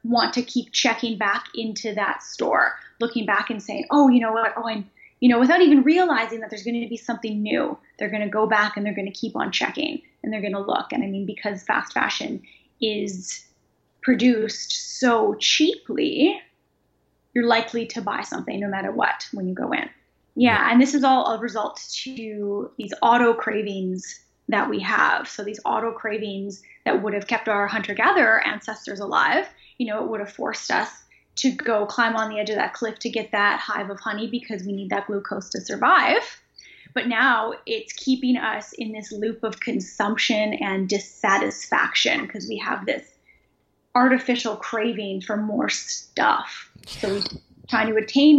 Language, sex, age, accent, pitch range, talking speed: English, female, 10-29, American, 210-250 Hz, 185 wpm